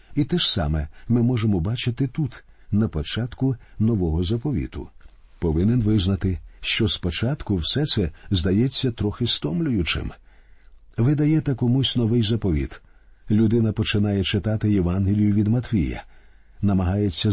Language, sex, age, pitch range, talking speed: Ukrainian, male, 50-69, 95-125 Hz, 110 wpm